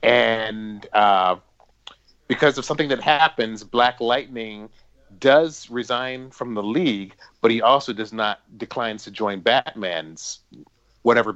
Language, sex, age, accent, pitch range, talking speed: English, male, 30-49, American, 110-135 Hz, 125 wpm